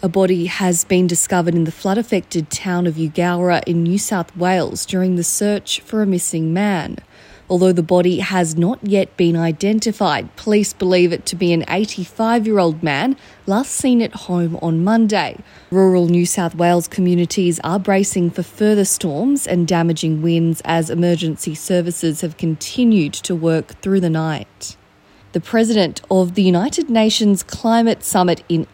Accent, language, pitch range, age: Australian, English, 170-205 Hz, 30-49